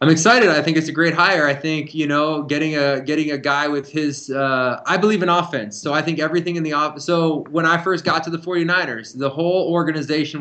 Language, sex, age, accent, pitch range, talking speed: English, male, 20-39, American, 135-165 Hz, 250 wpm